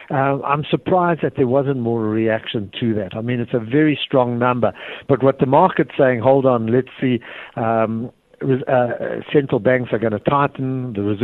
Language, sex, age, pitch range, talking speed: English, male, 60-79, 115-140 Hz, 185 wpm